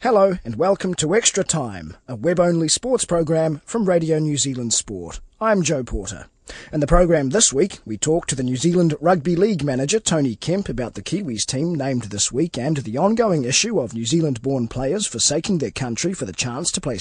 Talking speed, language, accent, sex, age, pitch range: 200 wpm, English, Australian, male, 30-49, 125-175 Hz